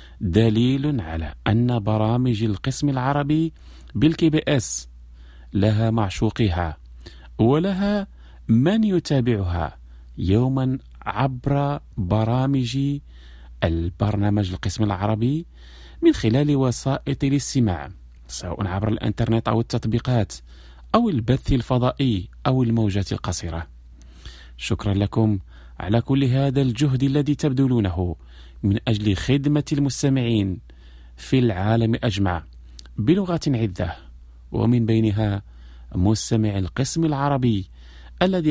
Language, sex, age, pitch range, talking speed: Arabic, male, 40-59, 80-130 Hz, 90 wpm